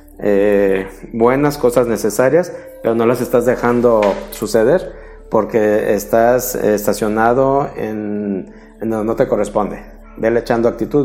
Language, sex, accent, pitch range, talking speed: Spanish, male, Mexican, 110-130 Hz, 120 wpm